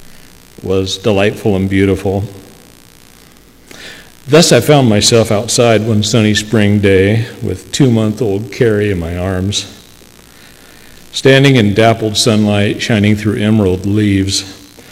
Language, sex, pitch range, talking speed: English, male, 95-115 Hz, 115 wpm